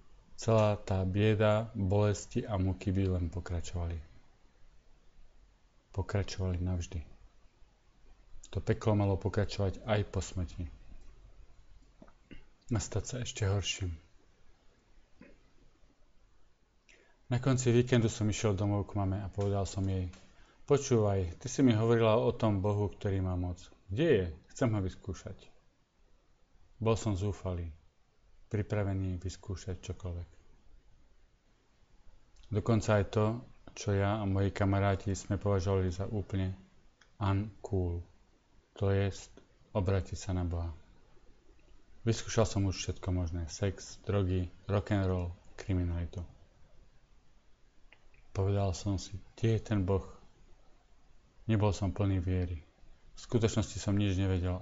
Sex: male